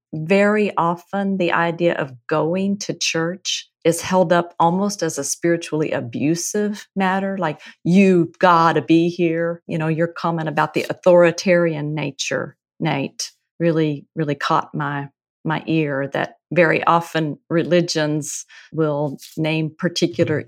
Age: 40-59